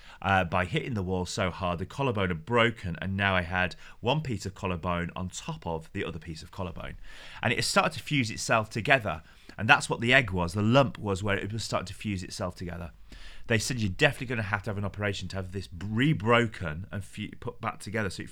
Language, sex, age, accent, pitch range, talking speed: English, male, 30-49, British, 90-120 Hz, 235 wpm